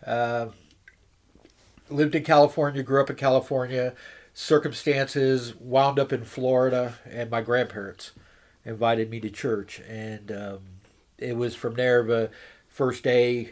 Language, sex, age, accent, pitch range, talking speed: English, male, 40-59, American, 115-130 Hz, 130 wpm